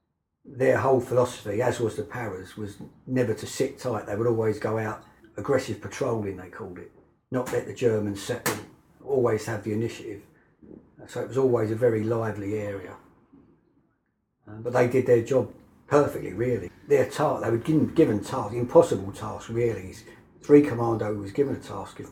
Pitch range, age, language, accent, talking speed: 105-120 Hz, 50-69, English, British, 170 wpm